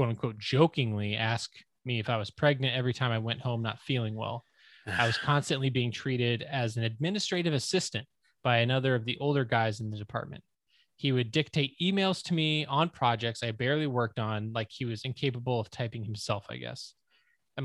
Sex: male